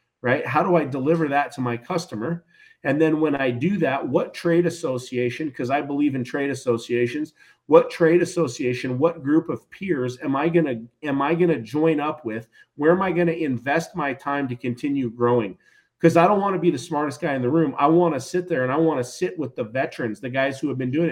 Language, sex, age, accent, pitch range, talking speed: English, male, 40-59, American, 130-170 Hz, 240 wpm